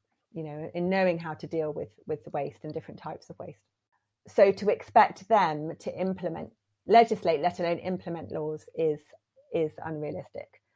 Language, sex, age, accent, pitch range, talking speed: English, female, 30-49, British, 160-190 Hz, 165 wpm